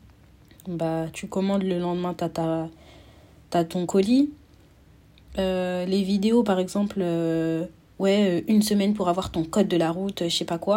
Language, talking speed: French, 165 wpm